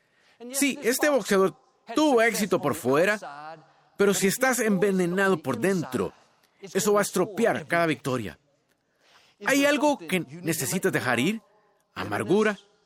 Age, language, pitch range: 50-69, Spanish, 155-205 Hz